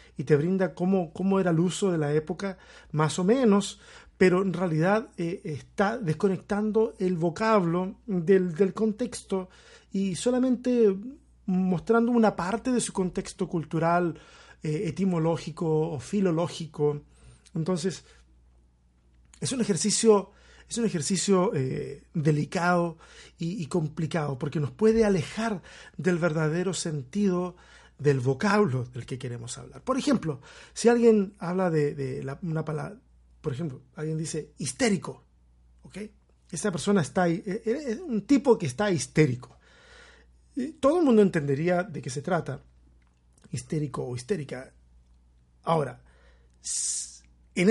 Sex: male